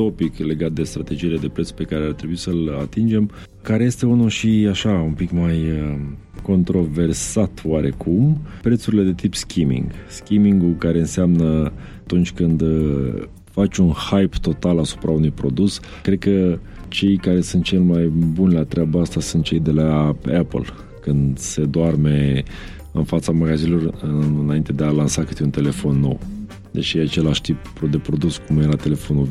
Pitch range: 80-100 Hz